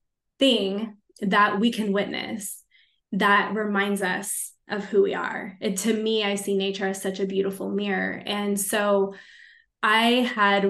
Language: English